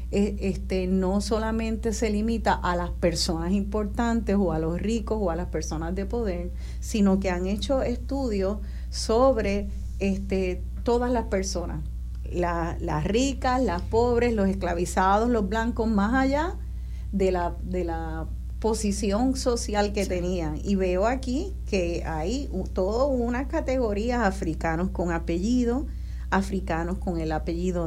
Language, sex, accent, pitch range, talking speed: Spanish, female, American, 180-230 Hz, 125 wpm